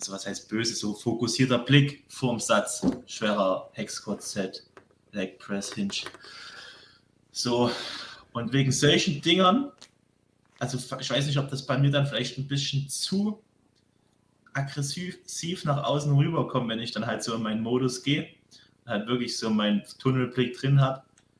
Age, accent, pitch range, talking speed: 20-39, German, 120-145 Hz, 150 wpm